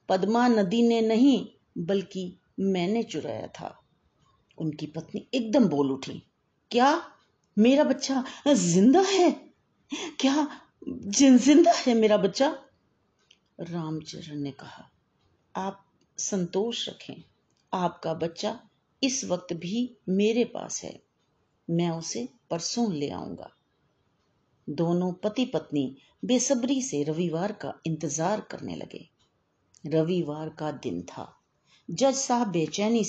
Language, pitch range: Hindi, 165-240 Hz